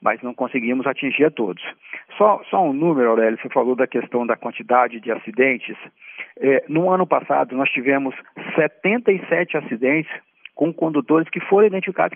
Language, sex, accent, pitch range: Portuguese, male, Brazilian, 140-195 Hz